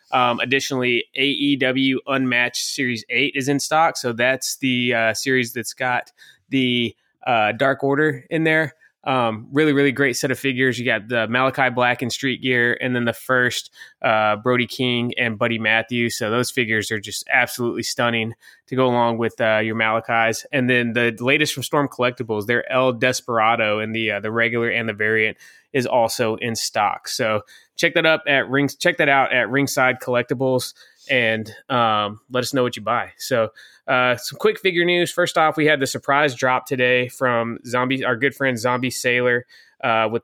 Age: 20-39